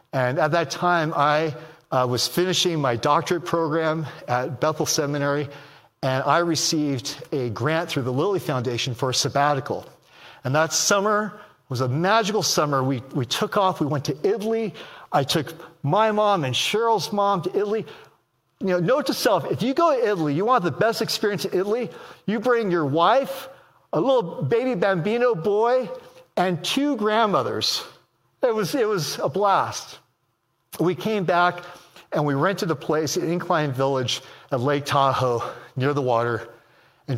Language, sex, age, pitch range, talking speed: English, male, 50-69, 130-185 Hz, 165 wpm